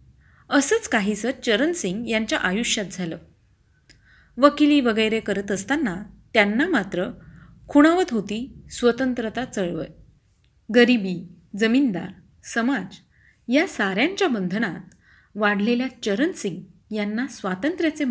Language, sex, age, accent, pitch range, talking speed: Marathi, female, 30-49, native, 190-265 Hz, 90 wpm